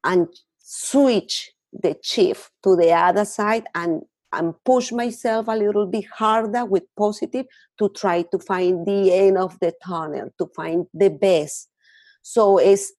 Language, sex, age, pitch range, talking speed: English, female, 40-59, 170-220 Hz, 150 wpm